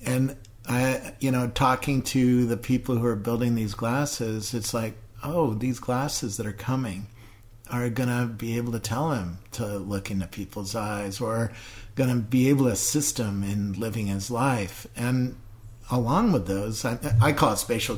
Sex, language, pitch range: male, English, 105-125 Hz